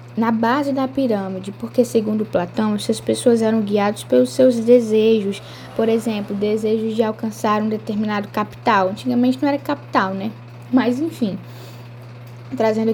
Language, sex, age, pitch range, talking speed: Portuguese, female, 10-29, 205-255 Hz, 140 wpm